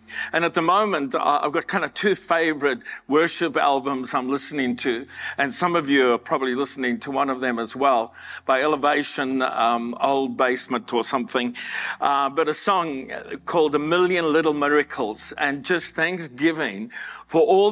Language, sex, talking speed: English, male, 165 wpm